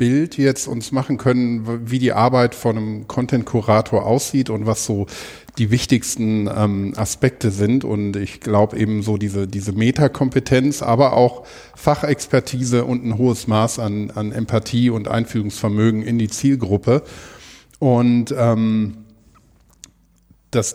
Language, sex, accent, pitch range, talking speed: English, male, German, 110-130 Hz, 135 wpm